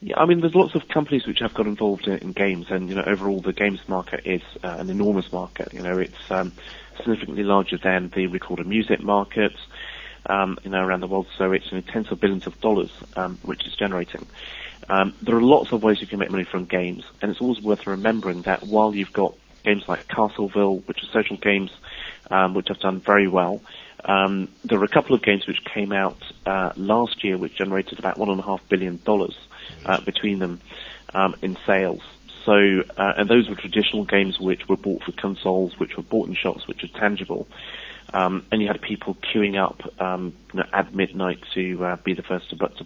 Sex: male